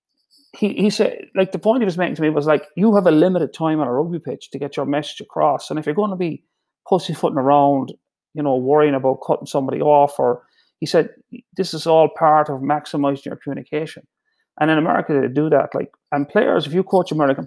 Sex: male